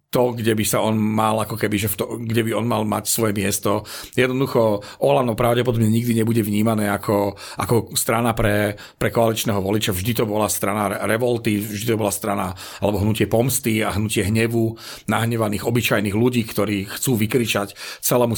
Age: 40-59